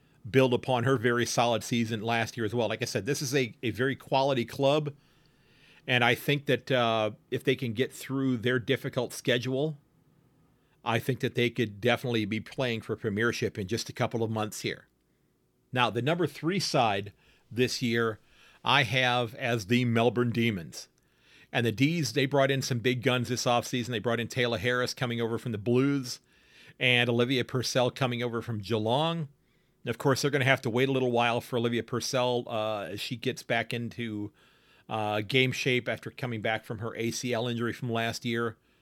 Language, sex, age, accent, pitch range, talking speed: English, male, 40-59, American, 115-130 Hz, 190 wpm